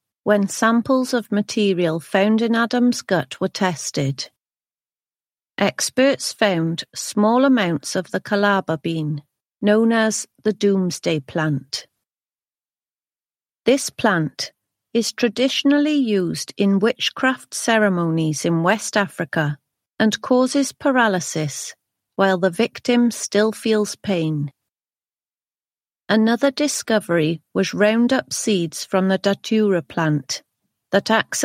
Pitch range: 170-235 Hz